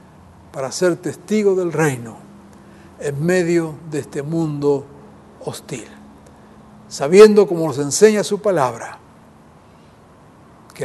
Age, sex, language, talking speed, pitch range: 60-79, male, Spanish, 100 wpm, 130-195 Hz